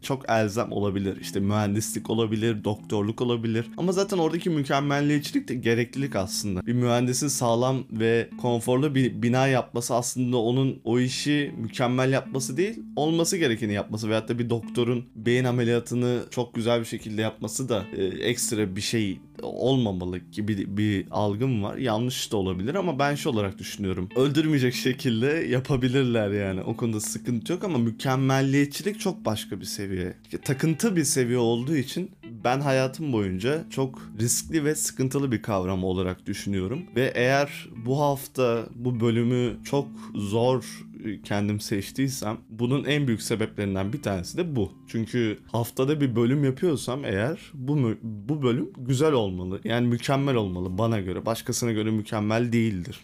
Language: Turkish